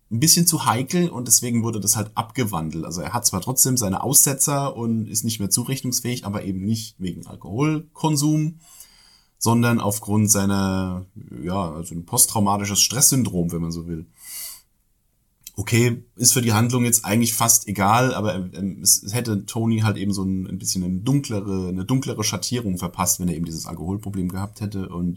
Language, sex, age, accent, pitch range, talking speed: German, male, 30-49, German, 100-125 Hz, 170 wpm